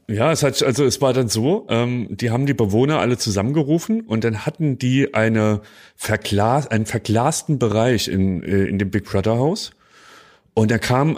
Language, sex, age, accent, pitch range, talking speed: German, male, 30-49, German, 110-155 Hz, 175 wpm